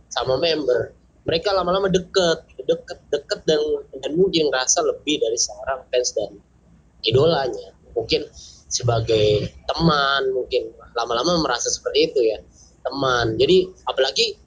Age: 20-39